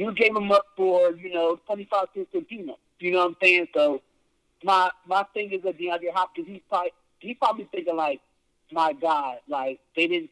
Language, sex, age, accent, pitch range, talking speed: English, male, 50-69, American, 165-260 Hz, 185 wpm